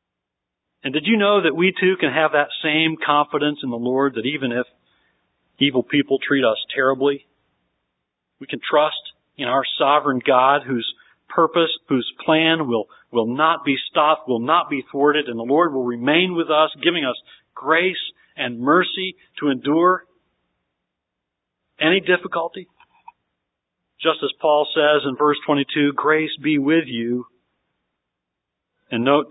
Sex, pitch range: male, 125-160 Hz